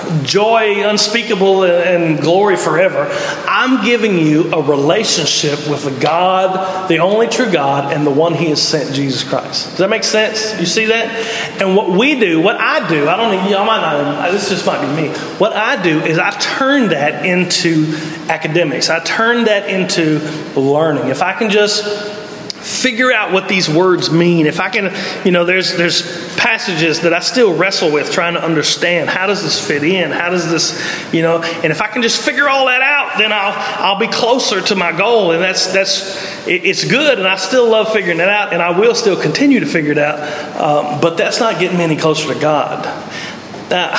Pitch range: 160-215 Hz